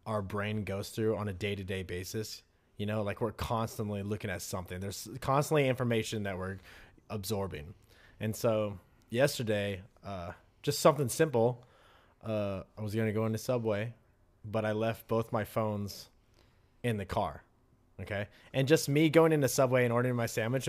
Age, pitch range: 20-39, 105-135 Hz